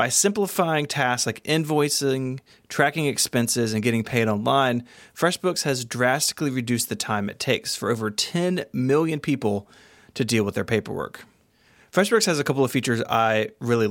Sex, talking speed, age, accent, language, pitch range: male, 160 wpm, 30-49, American, English, 115-145 Hz